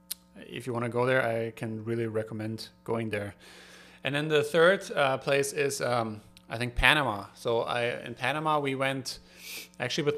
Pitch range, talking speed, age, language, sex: 110-130 Hz, 185 wpm, 30-49, English, male